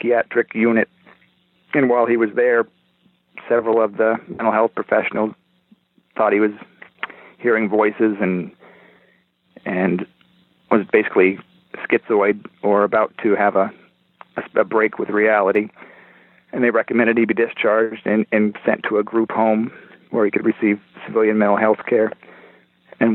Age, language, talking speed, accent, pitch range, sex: 40-59, English, 140 wpm, American, 105-115 Hz, male